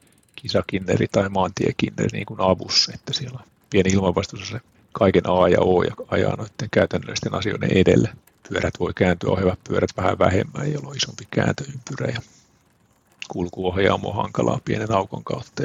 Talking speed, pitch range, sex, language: 150 wpm, 95-115 Hz, male, Finnish